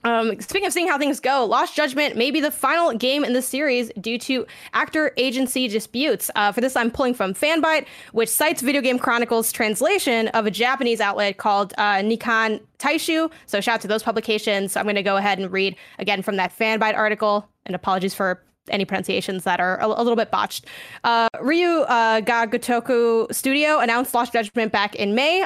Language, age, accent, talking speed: English, 10-29, American, 200 wpm